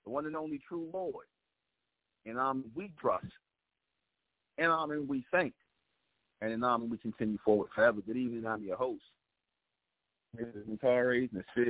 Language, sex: English, male